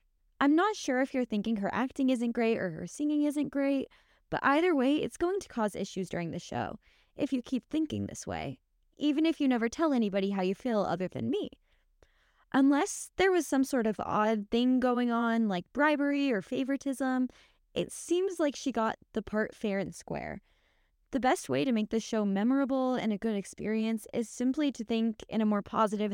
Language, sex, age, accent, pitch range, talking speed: English, female, 10-29, American, 215-290 Hz, 200 wpm